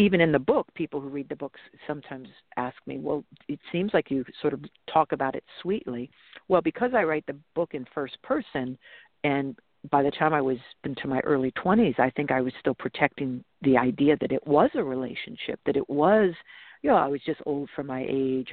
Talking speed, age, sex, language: 215 wpm, 50-69, female, English